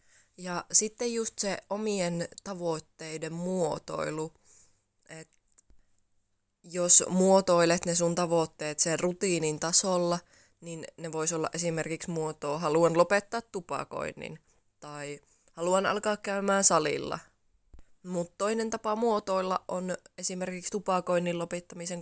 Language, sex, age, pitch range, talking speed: Finnish, female, 20-39, 160-185 Hz, 105 wpm